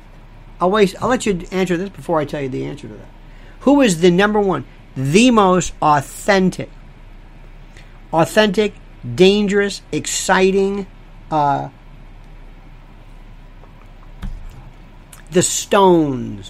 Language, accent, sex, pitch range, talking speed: English, American, male, 130-195 Hz, 100 wpm